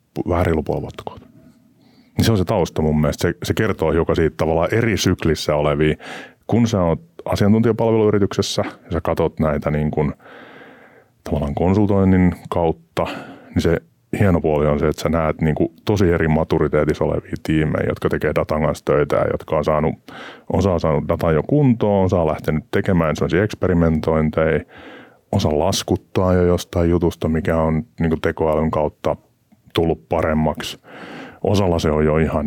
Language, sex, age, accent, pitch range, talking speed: Finnish, male, 30-49, native, 75-90 Hz, 155 wpm